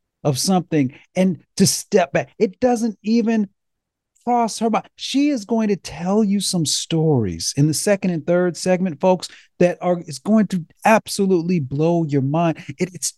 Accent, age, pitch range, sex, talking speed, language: American, 40-59, 130-175 Hz, male, 170 wpm, English